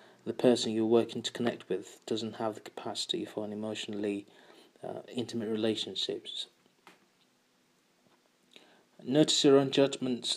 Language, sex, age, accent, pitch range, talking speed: English, male, 30-49, British, 110-120 Hz, 120 wpm